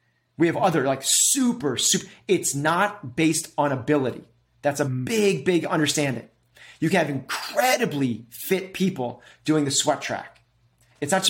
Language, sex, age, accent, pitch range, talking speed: English, male, 30-49, American, 140-180 Hz, 155 wpm